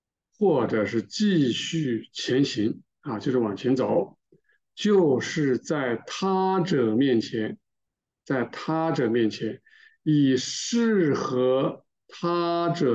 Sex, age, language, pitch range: male, 50-69, Chinese, 125-200 Hz